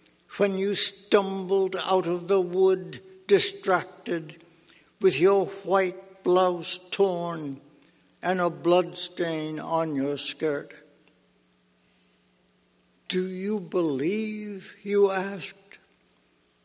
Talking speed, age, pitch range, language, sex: 85 wpm, 60-79, 165-205 Hz, English, male